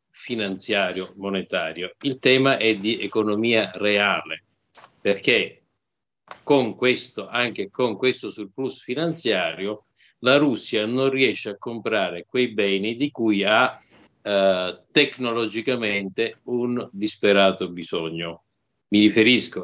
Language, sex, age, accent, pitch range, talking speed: Italian, male, 50-69, native, 95-115 Hz, 100 wpm